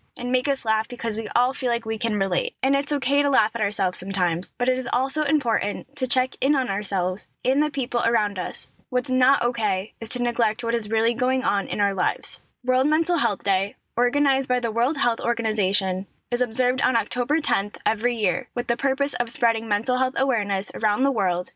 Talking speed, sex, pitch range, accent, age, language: 215 wpm, female, 210-260 Hz, American, 10-29, English